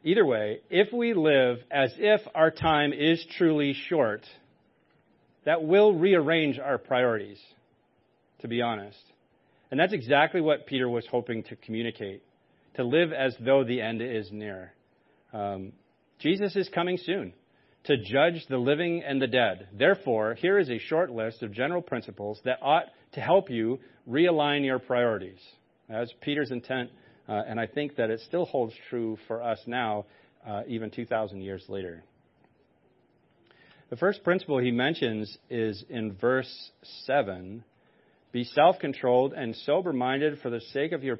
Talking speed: 150 wpm